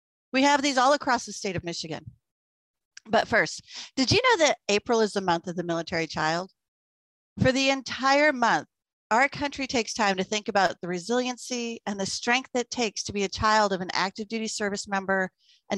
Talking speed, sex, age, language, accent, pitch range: 200 wpm, female, 40-59, English, American, 175-235 Hz